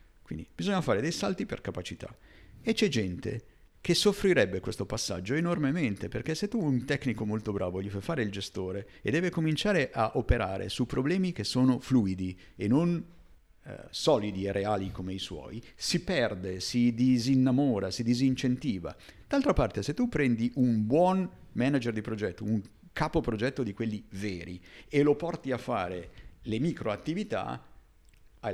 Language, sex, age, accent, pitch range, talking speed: Italian, male, 50-69, native, 100-140 Hz, 160 wpm